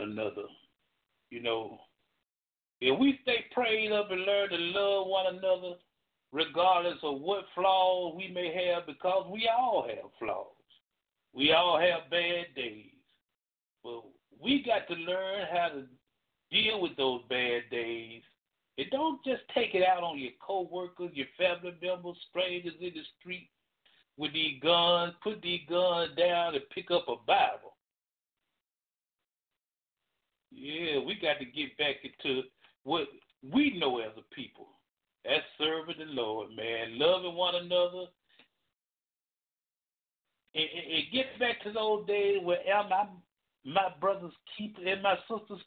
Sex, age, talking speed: male, 60-79, 145 wpm